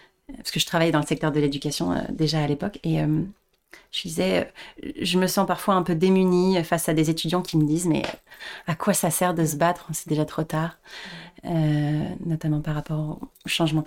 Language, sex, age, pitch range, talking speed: French, female, 30-49, 155-205 Hz, 220 wpm